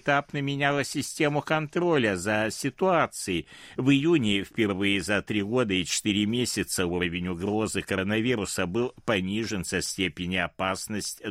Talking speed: 120 wpm